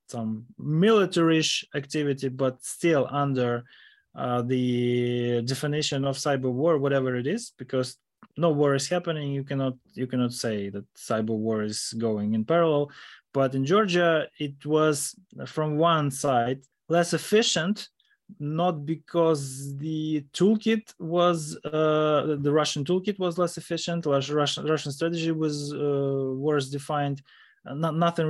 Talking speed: 135 wpm